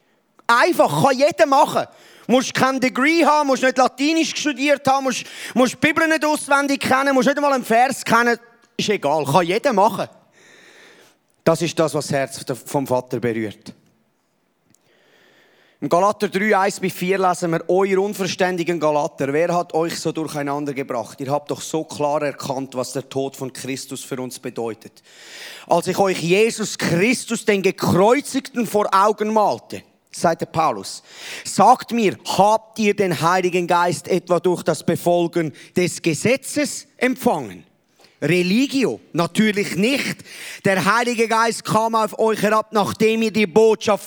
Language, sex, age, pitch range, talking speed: German, male, 30-49, 180-260 Hz, 150 wpm